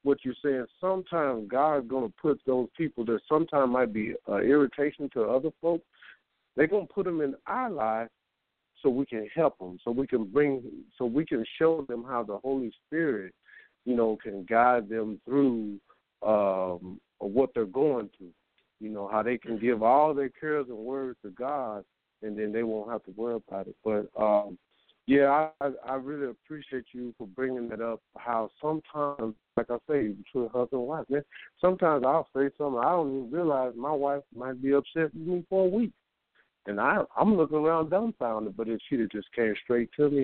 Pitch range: 115-150 Hz